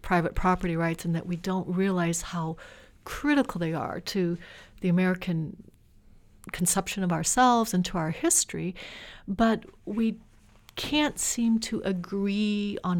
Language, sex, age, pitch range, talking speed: English, female, 60-79, 180-220 Hz, 135 wpm